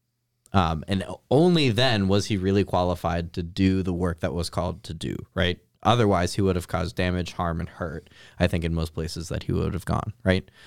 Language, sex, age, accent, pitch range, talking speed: English, male, 20-39, American, 90-110 Hz, 215 wpm